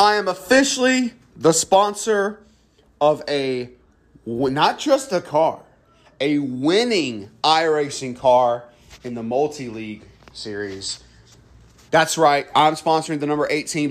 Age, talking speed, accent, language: 30-49, 110 wpm, American, English